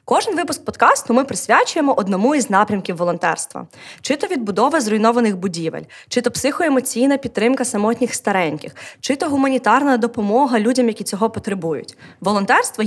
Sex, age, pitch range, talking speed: female, 20-39, 205-270 Hz, 135 wpm